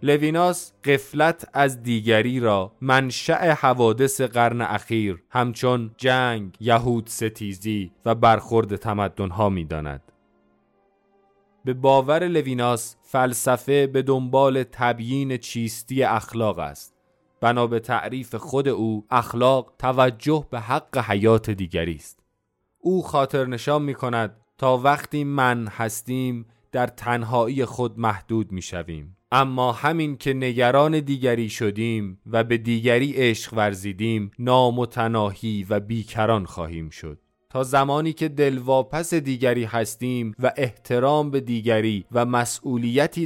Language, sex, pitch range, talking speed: Persian, male, 105-130 Hz, 115 wpm